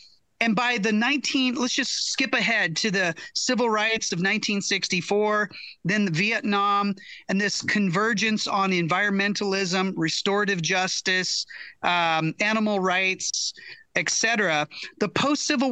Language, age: English, 30-49